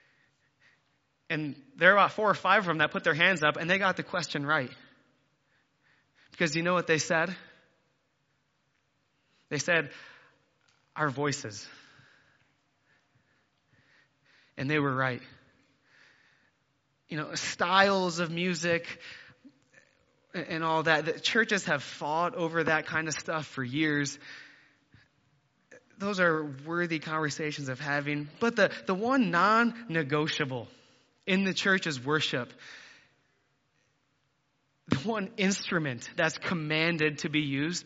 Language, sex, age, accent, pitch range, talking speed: English, male, 20-39, American, 140-165 Hz, 120 wpm